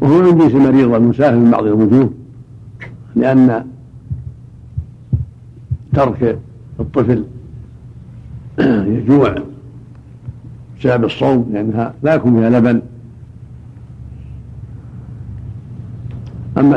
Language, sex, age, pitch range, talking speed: Arabic, male, 70-89, 110-135 Hz, 70 wpm